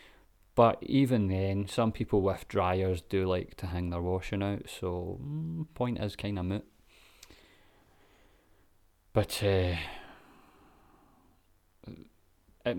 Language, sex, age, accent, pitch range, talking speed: English, male, 30-49, British, 90-105 Hz, 110 wpm